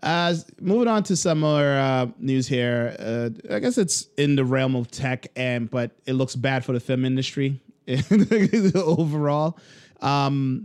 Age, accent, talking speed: 30-49, American, 165 wpm